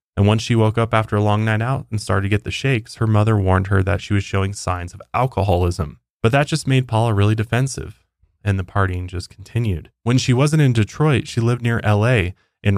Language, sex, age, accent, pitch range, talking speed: English, male, 20-39, American, 90-115 Hz, 230 wpm